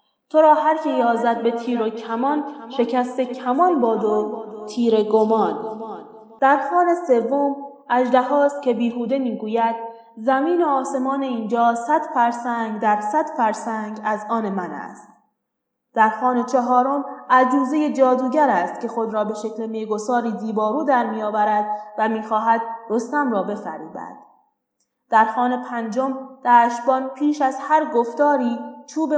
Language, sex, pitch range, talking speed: Persian, female, 220-270 Hz, 130 wpm